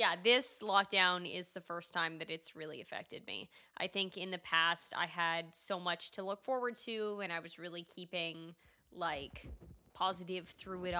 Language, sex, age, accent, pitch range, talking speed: English, female, 20-39, American, 170-190 Hz, 185 wpm